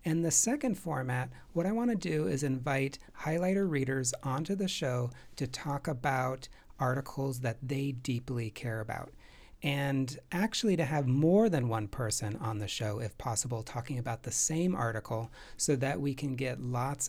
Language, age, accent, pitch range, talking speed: English, 40-59, American, 120-160 Hz, 170 wpm